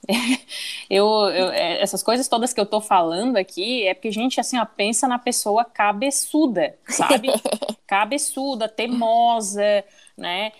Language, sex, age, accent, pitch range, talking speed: Portuguese, female, 20-39, Brazilian, 200-245 Hz, 130 wpm